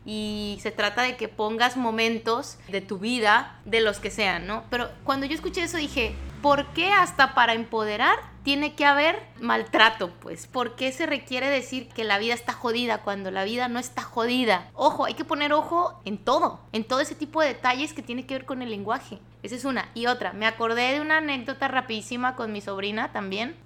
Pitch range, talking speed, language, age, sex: 215-270 Hz, 210 wpm, Spanish, 20-39, female